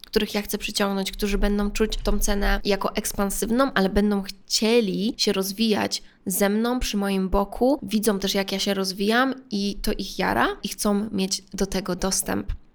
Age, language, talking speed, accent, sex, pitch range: 20-39, Polish, 175 wpm, native, female, 195-220 Hz